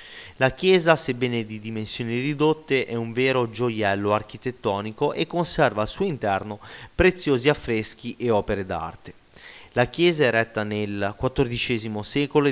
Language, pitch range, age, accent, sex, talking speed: Italian, 110-140 Hz, 30-49, native, male, 130 wpm